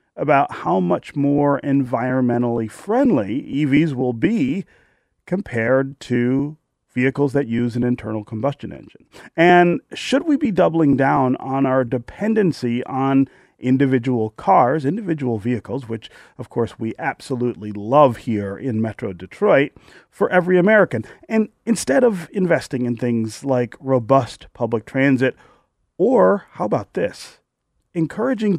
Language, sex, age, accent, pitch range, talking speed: English, male, 30-49, American, 120-175 Hz, 125 wpm